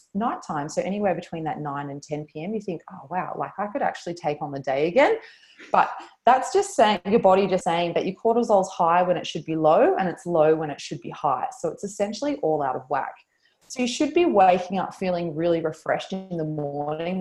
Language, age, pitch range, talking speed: English, 20-39, 155-190 Hz, 235 wpm